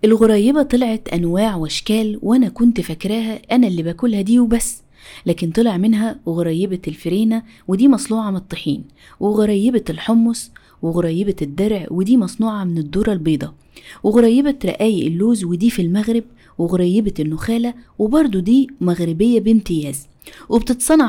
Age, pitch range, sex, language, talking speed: 20-39, 175-240 Hz, female, Arabic, 120 wpm